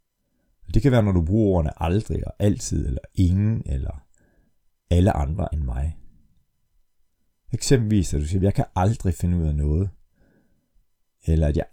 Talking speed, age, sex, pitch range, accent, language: 175 wpm, 40-59, male, 75-100 Hz, native, Danish